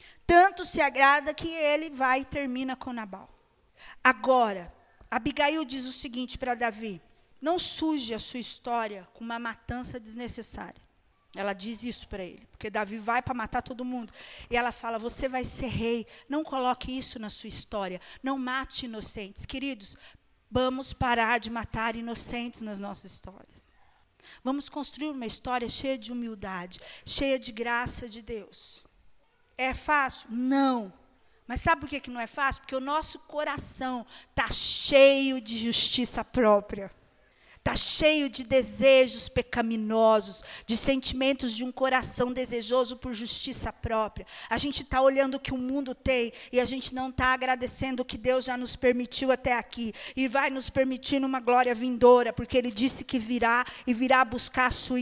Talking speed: 160 wpm